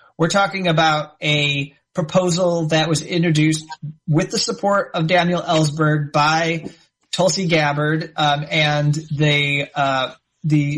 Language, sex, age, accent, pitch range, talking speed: English, male, 30-49, American, 145-165 Hz, 120 wpm